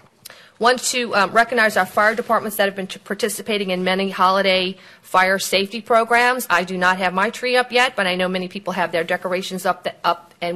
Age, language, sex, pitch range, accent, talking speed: 40-59, English, female, 175-200 Hz, American, 210 wpm